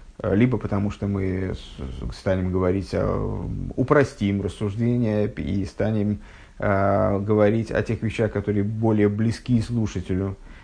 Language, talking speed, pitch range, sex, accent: Russian, 100 wpm, 100-130 Hz, male, native